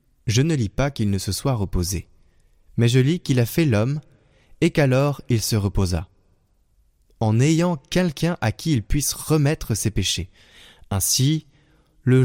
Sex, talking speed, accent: male, 160 wpm, French